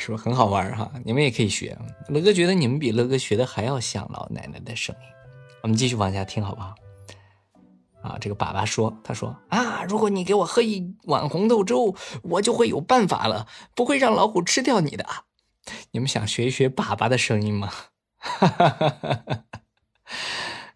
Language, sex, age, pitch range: Chinese, male, 20-39, 110-180 Hz